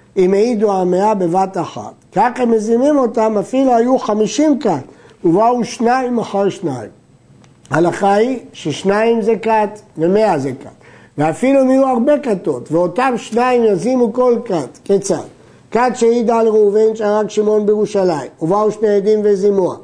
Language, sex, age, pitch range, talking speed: Hebrew, male, 50-69, 180-225 Hz, 135 wpm